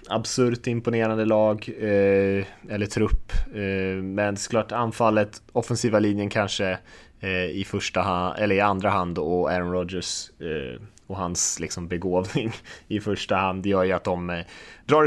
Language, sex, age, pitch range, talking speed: Swedish, male, 20-39, 90-110 Hz, 160 wpm